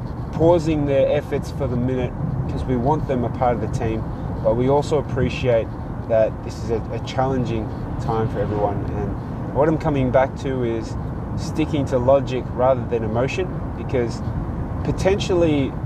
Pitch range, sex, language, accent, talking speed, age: 115-135 Hz, male, English, Australian, 165 wpm, 30-49